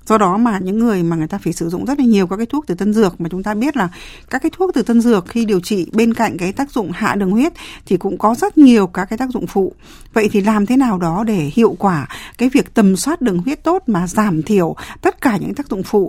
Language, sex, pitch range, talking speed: Vietnamese, female, 180-250 Hz, 285 wpm